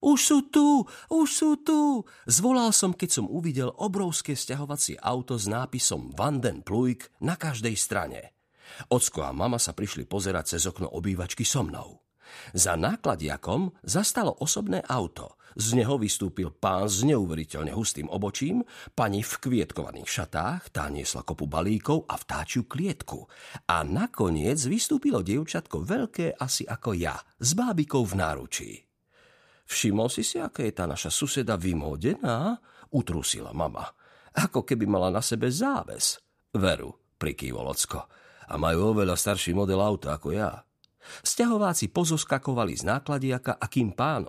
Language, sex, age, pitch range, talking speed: Slovak, male, 50-69, 95-155 Hz, 135 wpm